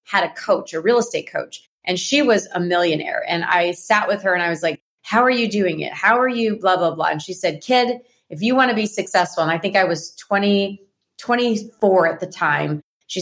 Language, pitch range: English, 170-200 Hz